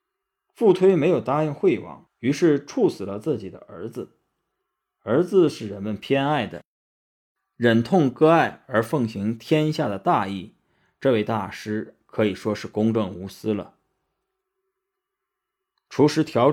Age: 20-39